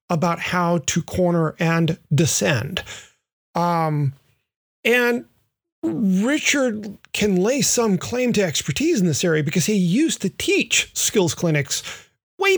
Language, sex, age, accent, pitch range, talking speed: English, male, 40-59, American, 155-195 Hz, 125 wpm